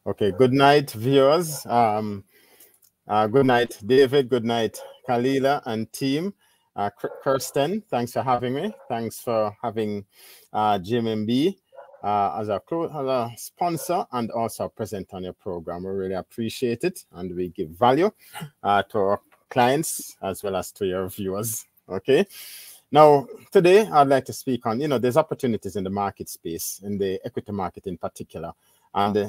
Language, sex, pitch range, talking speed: English, male, 105-145 Hz, 160 wpm